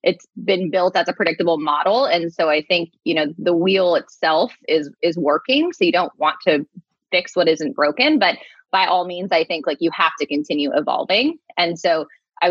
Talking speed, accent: 205 wpm, American